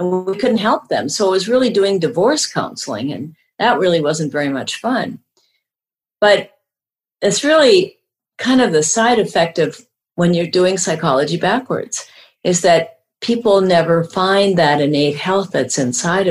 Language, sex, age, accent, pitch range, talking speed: English, female, 50-69, American, 165-210 Hz, 160 wpm